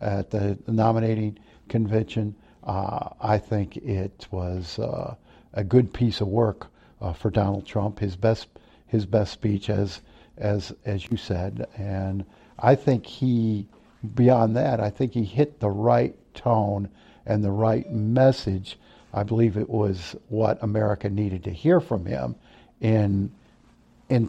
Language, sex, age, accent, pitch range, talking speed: English, male, 50-69, American, 100-120 Hz, 145 wpm